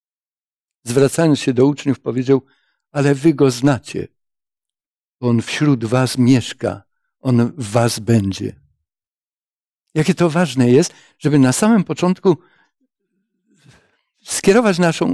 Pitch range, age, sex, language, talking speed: 135-170 Hz, 60-79, male, Polish, 110 wpm